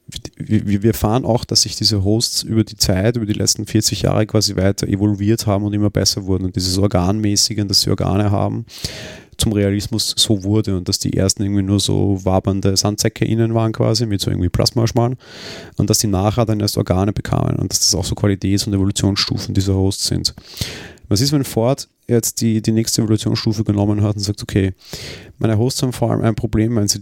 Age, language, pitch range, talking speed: 30-49, German, 100-115 Hz, 205 wpm